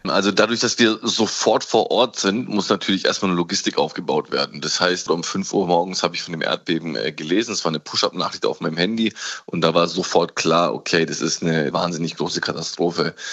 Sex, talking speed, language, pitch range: male, 210 wpm, German, 85-95 Hz